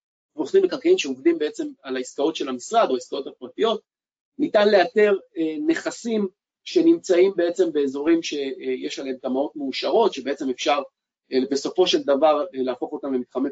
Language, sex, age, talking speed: Hebrew, male, 30-49, 130 wpm